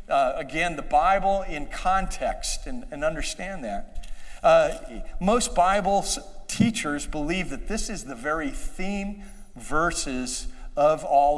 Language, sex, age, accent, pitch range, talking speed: English, male, 50-69, American, 165-220 Hz, 125 wpm